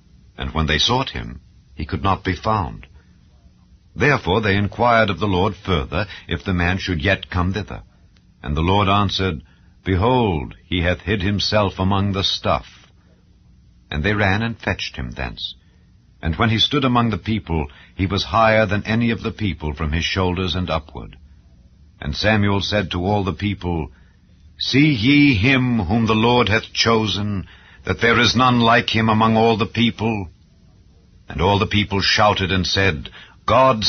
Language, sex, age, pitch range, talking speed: English, male, 60-79, 85-110 Hz, 170 wpm